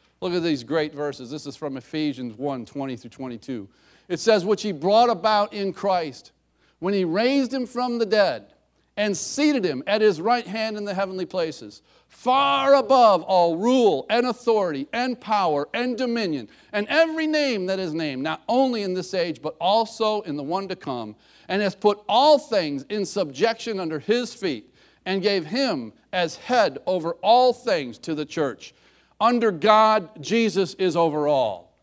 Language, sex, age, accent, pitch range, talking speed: English, male, 50-69, American, 155-230 Hz, 175 wpm